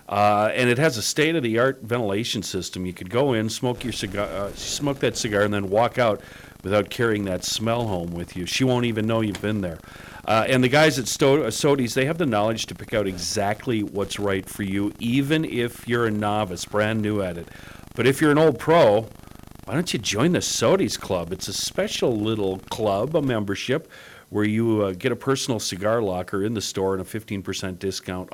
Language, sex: English, male